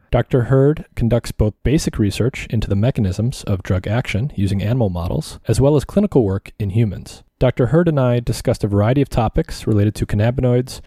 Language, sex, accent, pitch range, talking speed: English, male, American, 105-135 Hz, 190 wpm